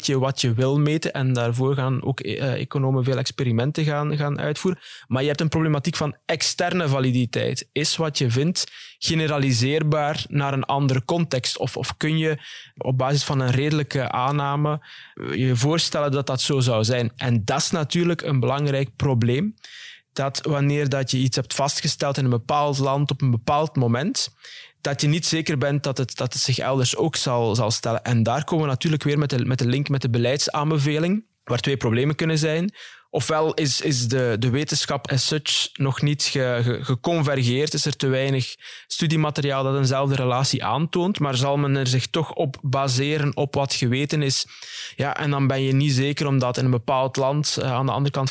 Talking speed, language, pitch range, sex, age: 190 wpm, Dutch, 130-150 Hz, male, 20-39